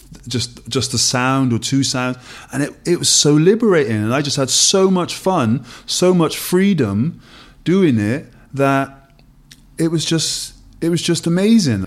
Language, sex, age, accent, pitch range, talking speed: English, male, 30-49, British, 120-145 Hz, 165 wpm